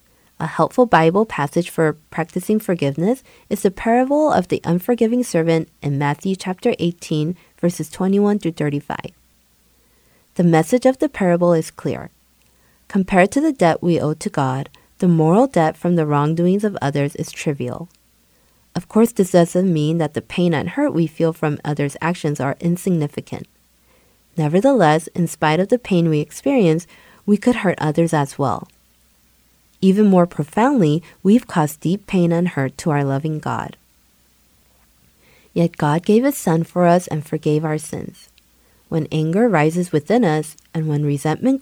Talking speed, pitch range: 160 wpm, 145-185 Hz